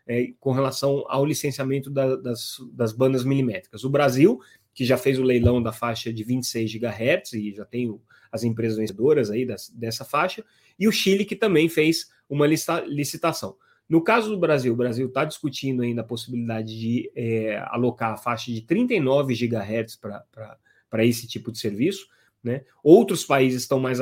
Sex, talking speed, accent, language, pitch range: male, 160 wpm, Brazilian, Portuguese, 115-145 Hz